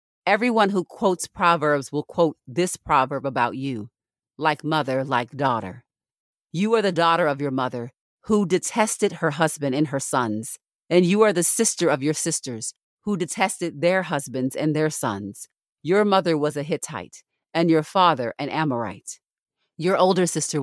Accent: American